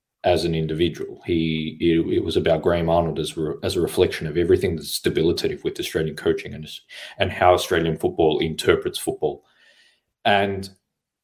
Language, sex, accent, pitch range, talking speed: English, male, Australian, 85-130 Hz, 160 wpm